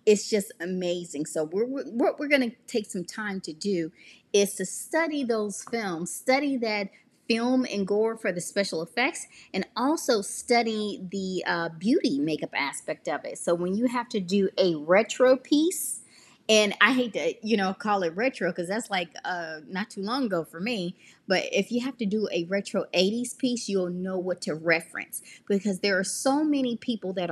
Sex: female